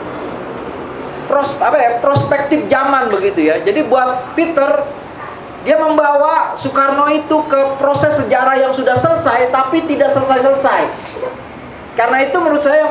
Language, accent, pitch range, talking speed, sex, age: Indonesian, native, 255-305 Hz, 130 wpm, male, 40-59